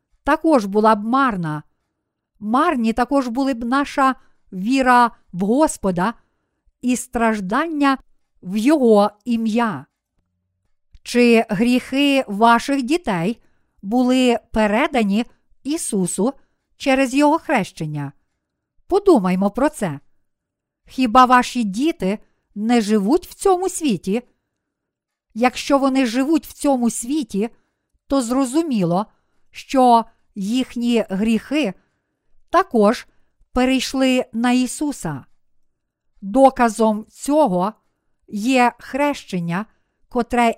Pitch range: 210-270 Hz